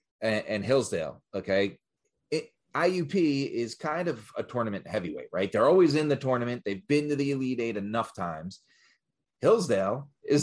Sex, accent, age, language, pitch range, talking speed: male, American, 30-49, English, 100-130 Hz, 155 wpm